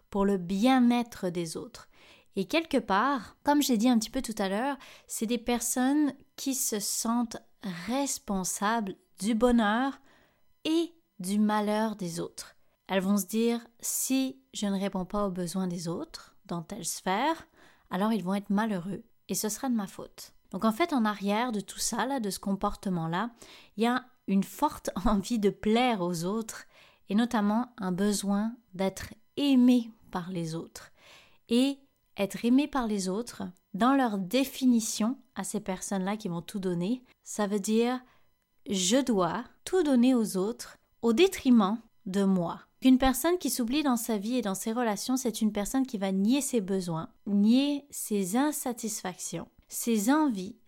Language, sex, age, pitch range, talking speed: French, female, 20-39, 195-250 Hz, 170 wpm